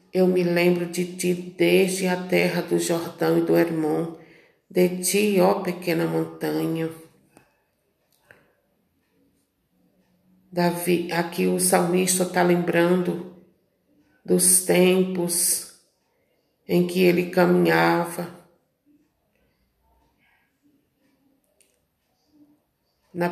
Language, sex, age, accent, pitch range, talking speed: Portuguese, female, 50-69, Brazilian, 165-180 Hz, 75 wpm